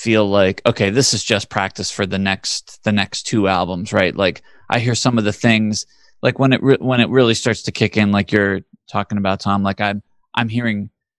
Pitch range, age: 100-125 Hz, 20-39